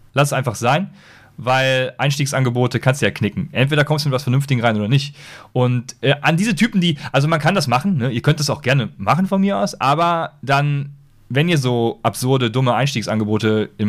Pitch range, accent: 120-165 Hz, German